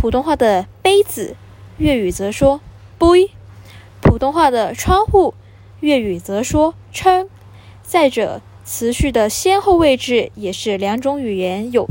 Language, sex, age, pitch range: Chinese, female, 10-29, 190-295 Hz